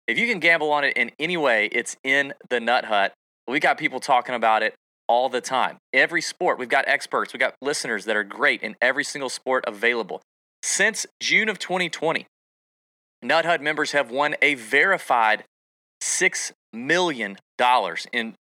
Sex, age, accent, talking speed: male, 30-49, American, 175 wpm